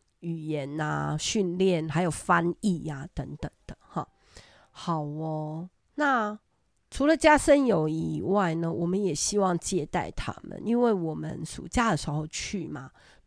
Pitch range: 155-210 Hz